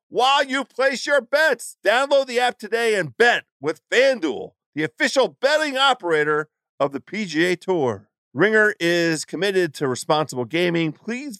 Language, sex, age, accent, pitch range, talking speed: English, male, 50-69, American, 135-215 Hz, 145 wpm